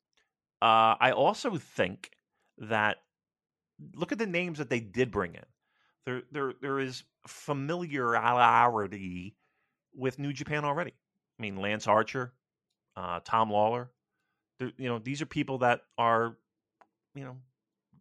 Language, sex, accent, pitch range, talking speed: English, male, American, 110-150 Hz, 130 wpm